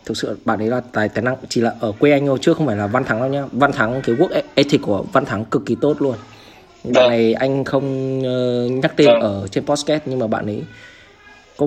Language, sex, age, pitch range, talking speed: Vietnamese, male, 20-39, 110-150 Hz, 250 wpm